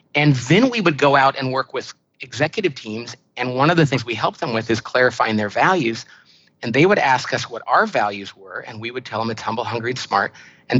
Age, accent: 40-59, American